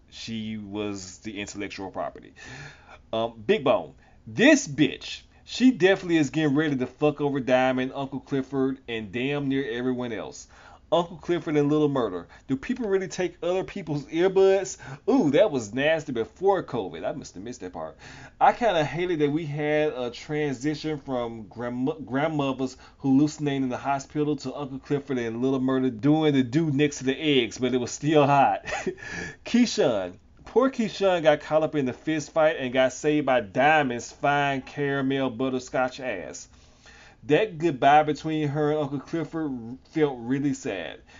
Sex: male